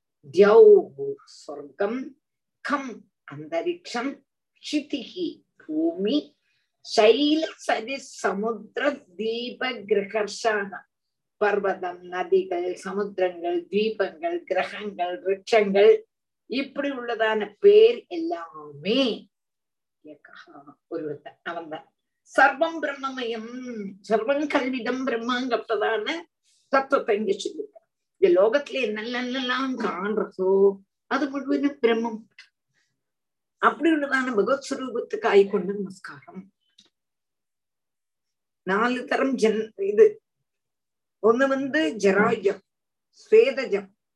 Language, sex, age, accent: Tamil, female, 50-69, native